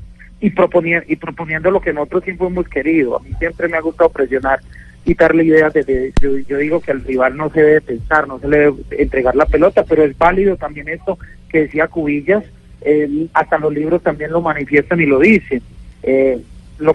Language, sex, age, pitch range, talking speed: Spanish, male, 40-59, 140-170 Hz, 210 wpm